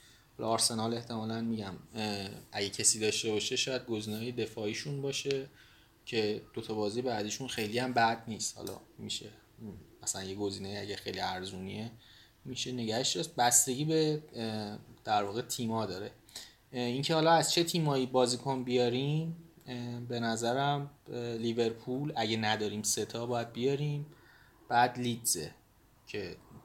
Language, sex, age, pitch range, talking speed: Persian, male, 20-39, 110-135 Hz, 120 wpm